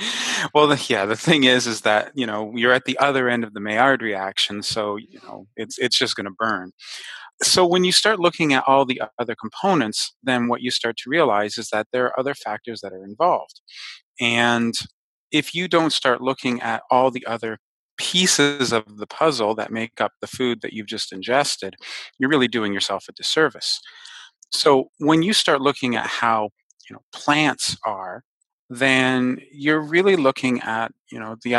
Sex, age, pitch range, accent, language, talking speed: male, 30-49, 105-130 Hz, American, English, 190 wpm